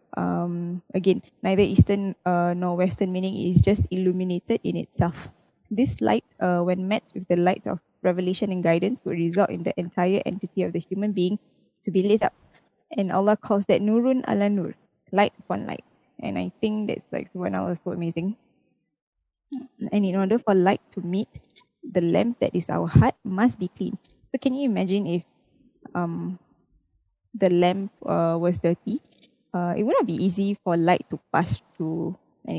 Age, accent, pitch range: 10-29, Malaysian, 175-205 Hz